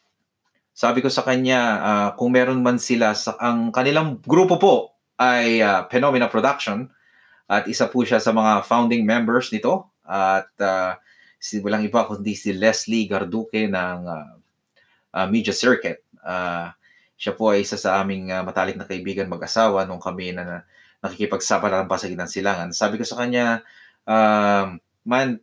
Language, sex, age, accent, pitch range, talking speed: Filipino, male, 20-39, native, 95-115 Hz, 160 wpm